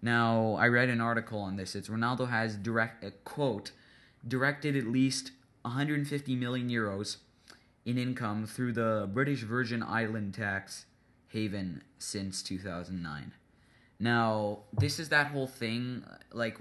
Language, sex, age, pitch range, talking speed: English, male, 20-39, 95-125 Hz, 135 wpm